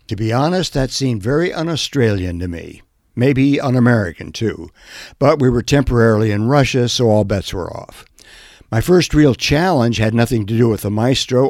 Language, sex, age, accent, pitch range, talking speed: English, male, 60-79, American, 110-140 Hz, 180 wpm